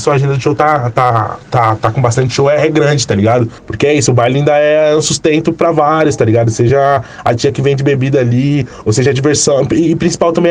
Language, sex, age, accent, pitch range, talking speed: Portuguese, male, 20-39, Brazilian, 120-155 Hz, 240 wpm